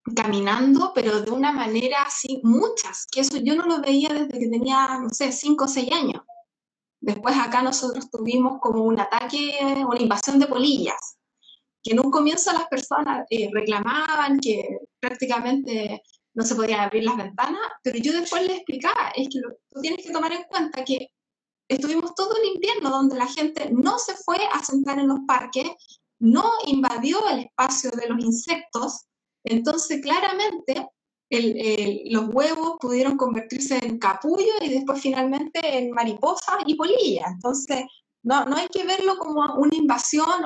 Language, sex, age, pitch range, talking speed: Spanish, female, 20-39, 240-300 Hz, 170 wpm